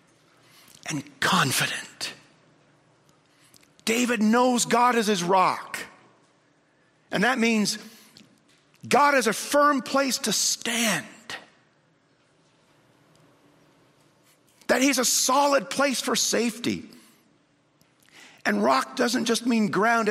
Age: 50-69